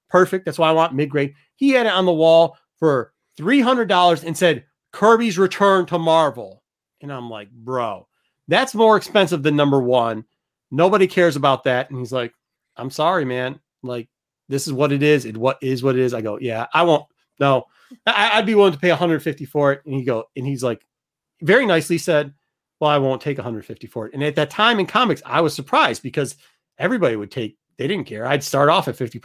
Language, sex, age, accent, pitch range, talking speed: English, male, 30-49, American, 140-180 Hz, 205 wpm